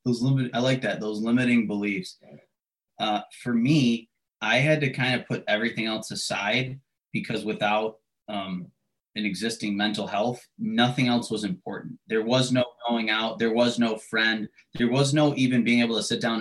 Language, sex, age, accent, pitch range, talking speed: English, male, 20-39, American, 105-125 Hz, 180 wpm